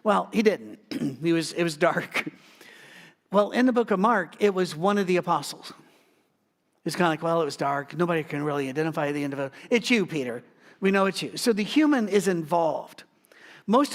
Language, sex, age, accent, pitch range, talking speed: English, male, 50-69, American, 165-230 Hz, 195 wpm